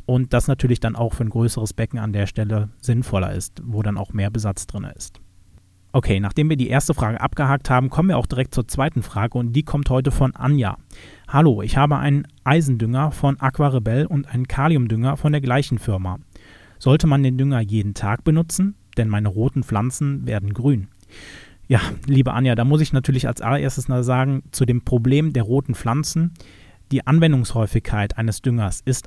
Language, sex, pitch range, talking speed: German, male, 110-135 Hz, 190 wpm